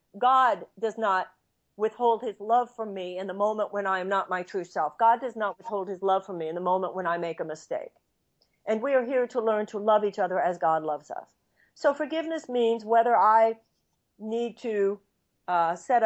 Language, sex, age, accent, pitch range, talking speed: English, female, 50-69, American, 170-230 Hz, 215 wpm